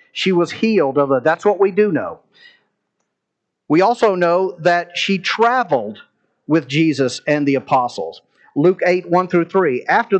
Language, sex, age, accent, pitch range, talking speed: English, male, 50-69, American, 150-205 Hz, 145 wpm